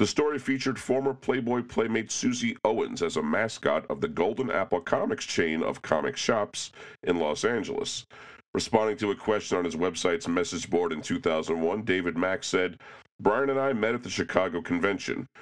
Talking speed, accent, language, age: 175 wpm, American, English, 40-59